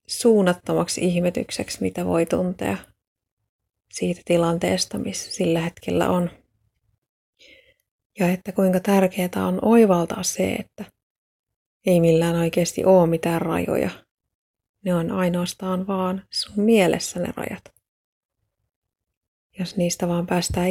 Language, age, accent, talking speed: Finnish, 30-49, native, 105 wpm